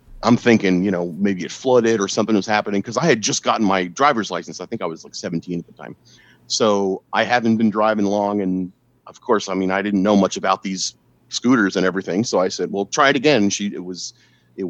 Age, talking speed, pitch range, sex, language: 40-59, 240 wpm, 100-125 Hz, male, English